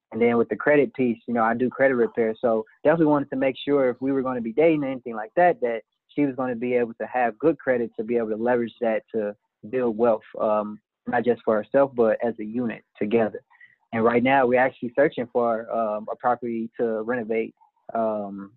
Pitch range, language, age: 115-140 Hz, English, 20-39